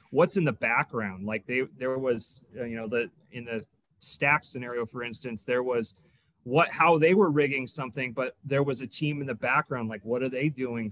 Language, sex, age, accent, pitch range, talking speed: English, male, 30-49, American, 115-145 Hz, 210 wpm